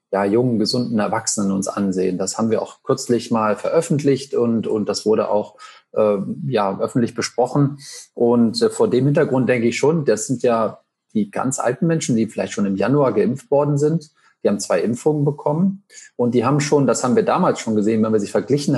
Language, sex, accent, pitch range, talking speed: German, male, German, 115-150 Hz, 200 wpm